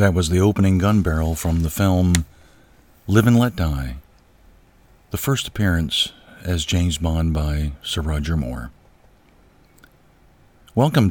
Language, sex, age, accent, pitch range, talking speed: English, male, 50-69, American, 80-95 Hz, 130 wpm